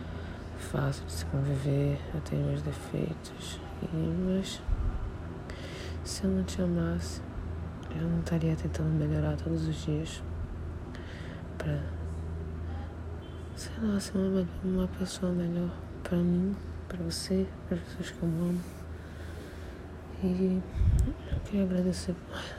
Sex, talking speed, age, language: female, 125 wpm, 20-39, Portuguese